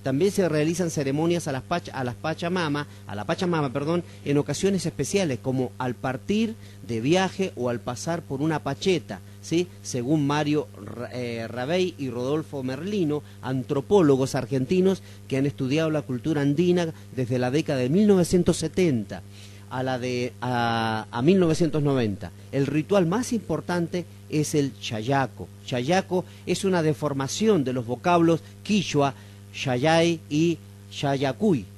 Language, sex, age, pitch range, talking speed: Spanish, male, 40-59, 125-175 Hz, 140 wpm